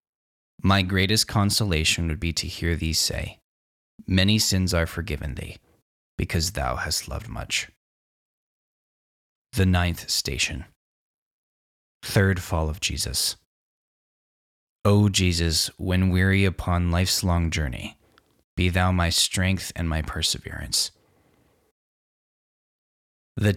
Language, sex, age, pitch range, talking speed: English, male, 20-39, 75-95 Hz, 105 wpm